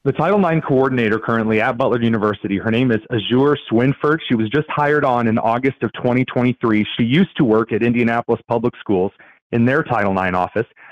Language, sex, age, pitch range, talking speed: English, male, 30-49, 125-170 Hz, 190 wpm